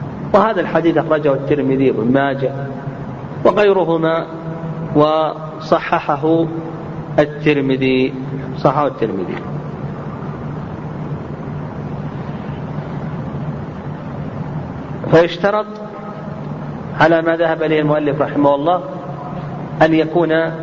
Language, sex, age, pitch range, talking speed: Arabic, male, 40-59, 145-175 Hz, 60 wpm